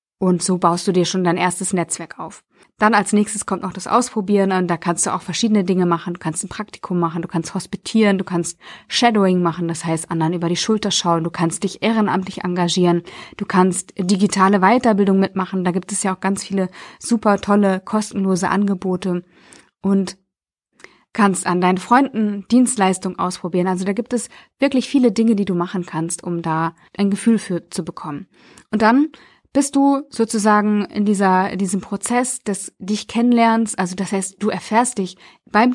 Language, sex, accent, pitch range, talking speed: German, female, German, 180-220 Hz, 185 wpm